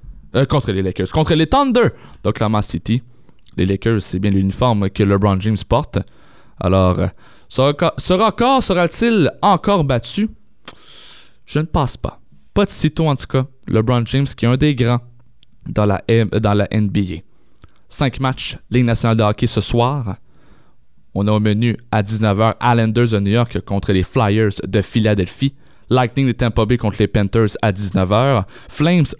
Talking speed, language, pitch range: 165 wpm, French, 105-140 Hz